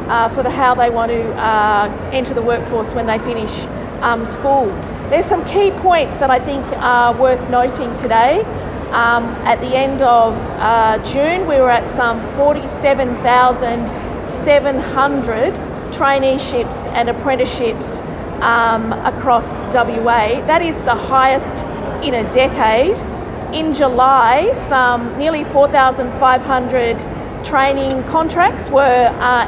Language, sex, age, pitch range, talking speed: English, female, 40-59, 240-275 Hz, 125 wpm